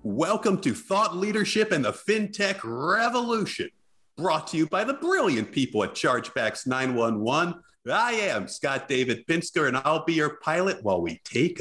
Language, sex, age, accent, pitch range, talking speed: English, male, 50-69, American, 145-215 Hz, 160 wpm